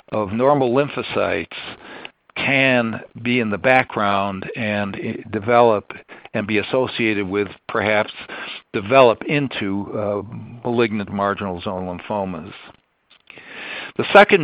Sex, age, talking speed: male, 60-79, 100 wpm